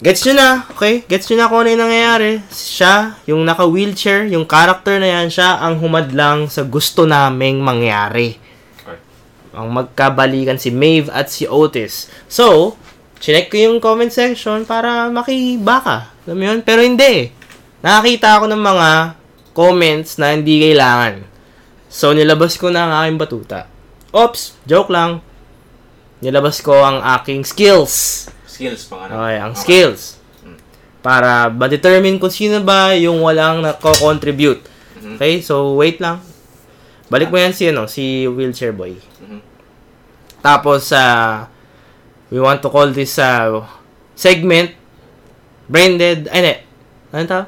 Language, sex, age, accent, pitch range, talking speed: English, male, 20-39, Filipino, 130-185 Hz, 125 wpm